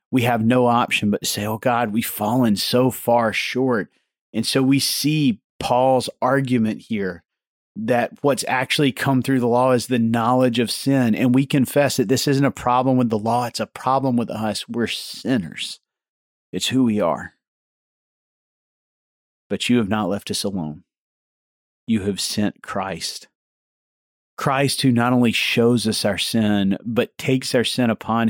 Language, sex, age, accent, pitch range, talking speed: English, male, 40-59, American, 110-130 Hz, 170 wpm